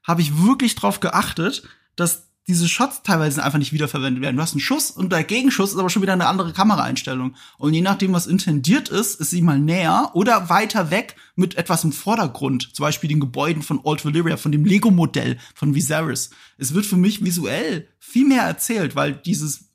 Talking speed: 200 wpm